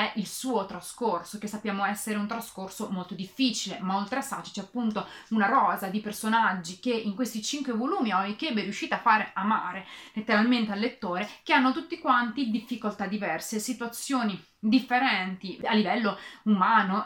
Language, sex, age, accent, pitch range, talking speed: Italian, female, 30-49, native, 200-250 Hz, 160 wpm